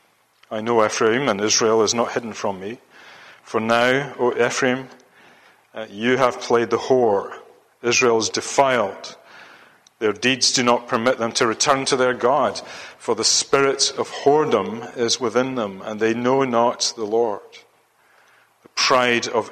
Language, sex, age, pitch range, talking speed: English, male, 40-59, 105-130 Hz, 155 wpm